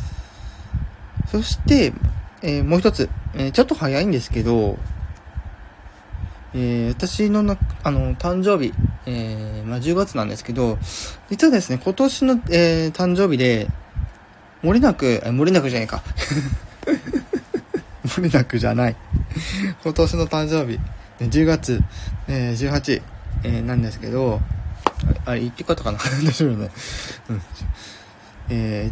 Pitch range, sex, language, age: 95-135 Hz, male, Japanese, 20-39